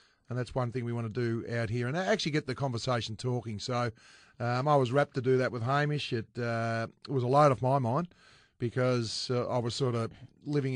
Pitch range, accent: 120-140 Hz, Australian